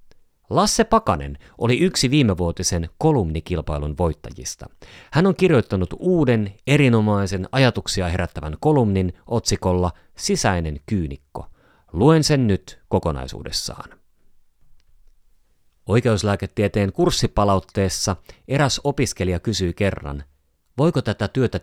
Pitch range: 85-120 Hz